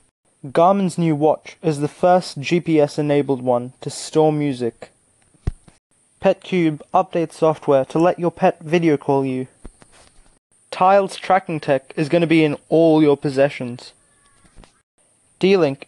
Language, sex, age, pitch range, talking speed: English, male, 20-39, 135-170 Hz, 125 wpm